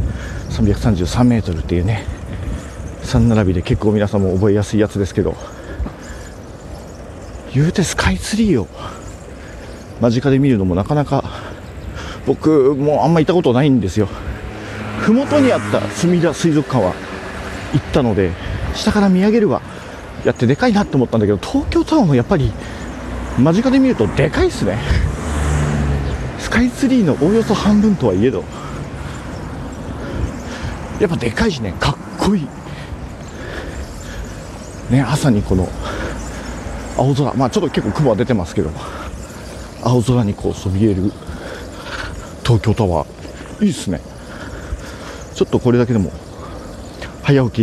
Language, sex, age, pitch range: Japanese, male, 40-59, 90-140 Hz